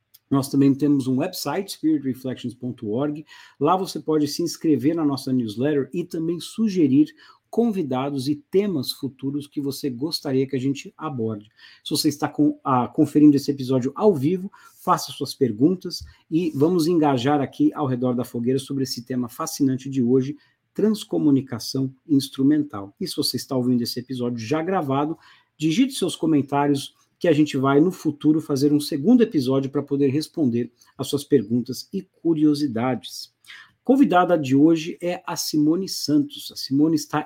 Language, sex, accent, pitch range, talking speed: English, male, Brazilian, 135-165 Hz, 155 wpm